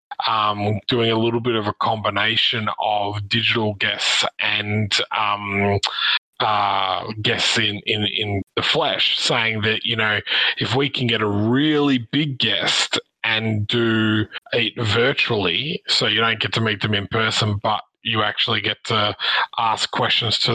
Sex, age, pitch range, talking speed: male, 20-39, 105-115 Hz, 155 wpm